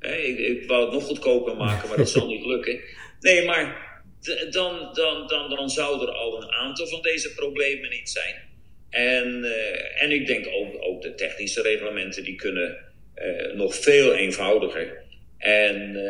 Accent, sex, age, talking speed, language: Dutch, male, 50-69, 165 wpm, Dutch